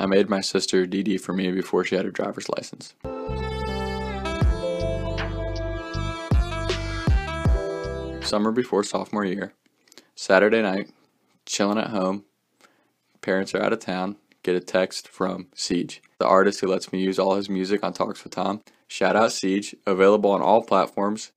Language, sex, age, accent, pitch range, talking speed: English, male, 20-39, American, 95-105 Hz, 145 wpm